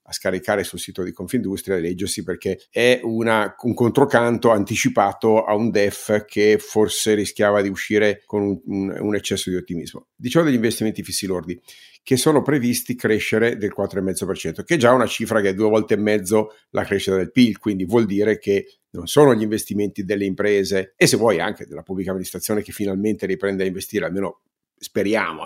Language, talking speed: Italian, 185 wpm